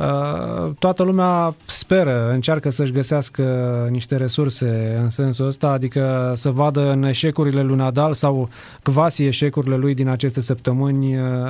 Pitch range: 130-150 Hz